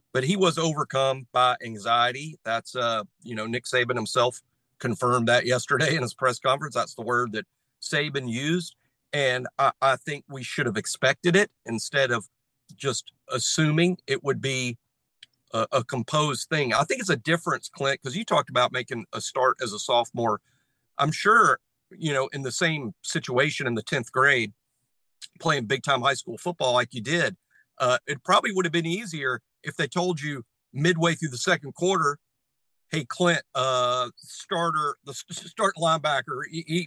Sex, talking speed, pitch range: male, 175 wpm, 125-165 Hz